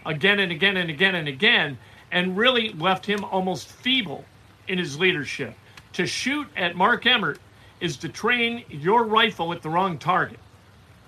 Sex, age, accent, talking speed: male, 50-69, American, 160 wpm